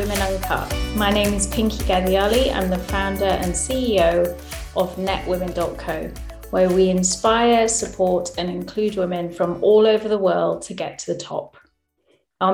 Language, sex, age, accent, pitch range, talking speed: English, female, 30-49, British, 180-210 Hz, 155 wpm